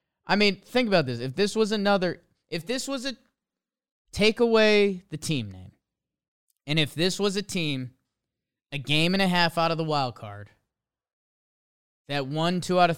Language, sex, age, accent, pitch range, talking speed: English, male, 20-39, American, 140-205 Hz, 180 wpm